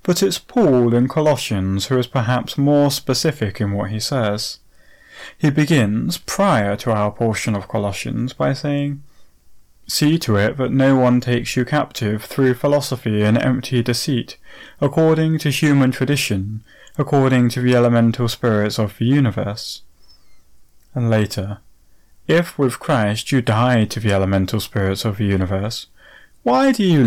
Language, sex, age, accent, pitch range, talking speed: English, male, 30-49, British, 110-145 Hz, 150 wpm